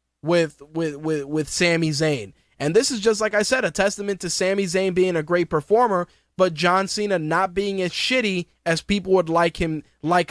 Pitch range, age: 160-200 Hz, 20-39